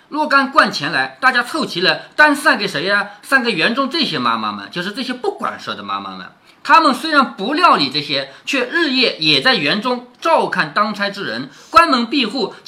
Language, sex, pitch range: Chinese, male, 190-300 Hz